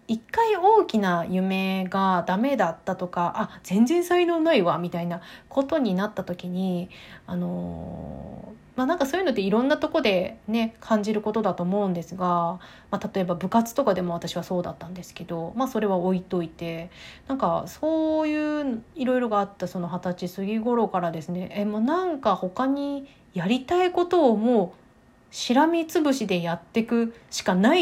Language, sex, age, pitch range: Japanese, female, 30-49, 185-255 Hz